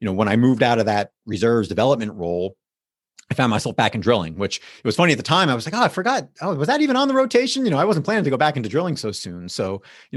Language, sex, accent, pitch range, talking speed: English, male, American, 100-135 Hz, 300 wpm